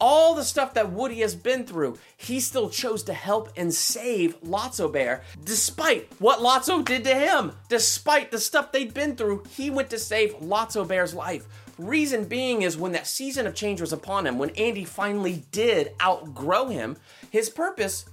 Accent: American